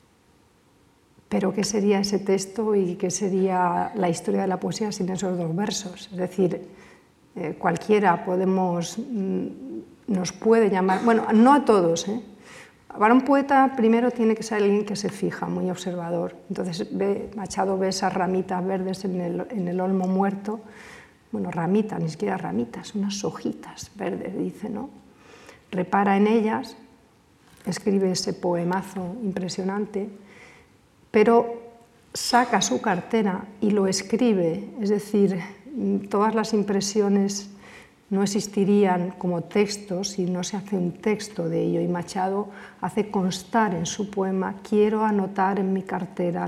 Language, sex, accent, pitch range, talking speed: Spanish, female, Spanish, 180-210 Hz, 140 wpm